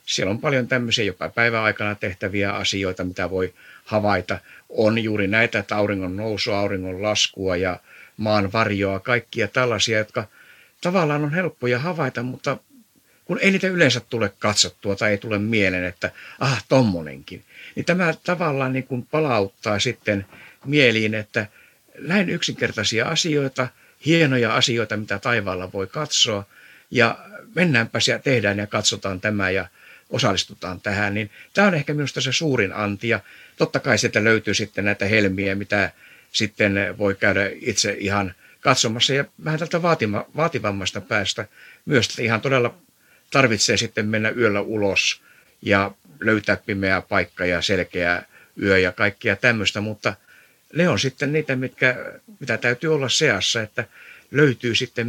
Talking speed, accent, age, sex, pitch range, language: 145 wpm, native, 60-79, male, 100-130 Hz, Finnish